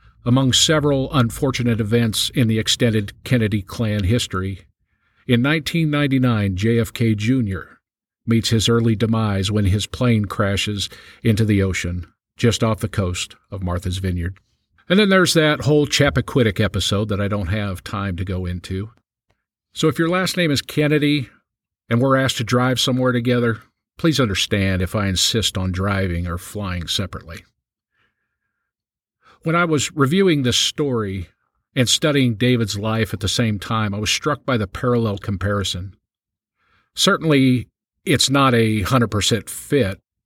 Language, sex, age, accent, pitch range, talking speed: English, male, 50-69, American, 100-130 Hz, 145 wpm